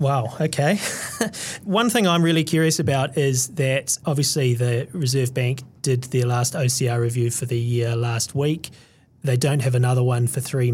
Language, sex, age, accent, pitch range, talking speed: English, male, 30-49, Australian, 125-145 Hz, 175 wpm